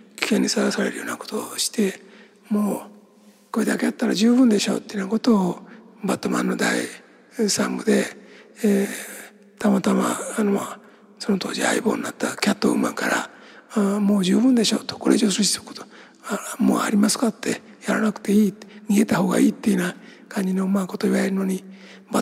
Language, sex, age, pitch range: Japanese, male, 60-79, 205-225 Hz